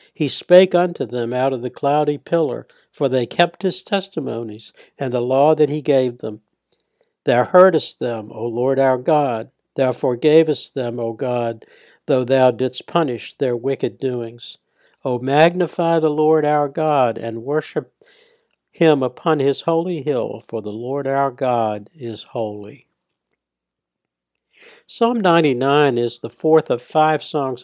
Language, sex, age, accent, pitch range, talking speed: English, male, 60-79, American, 125-155 Hz, 150 wpm